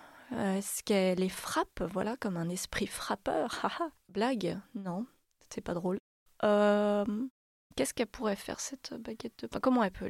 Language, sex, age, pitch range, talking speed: French, female, 20-39, 185-235 Hz, 165 wpm